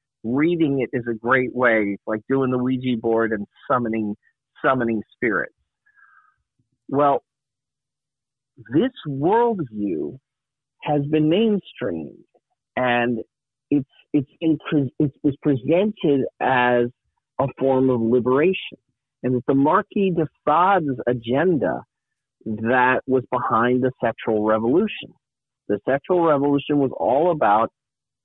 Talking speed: 110 wpm